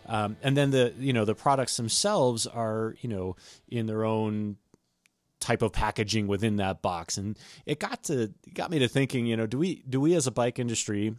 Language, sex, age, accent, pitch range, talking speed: English, male, 30-49, American, 100-125 Hz, 215 wpm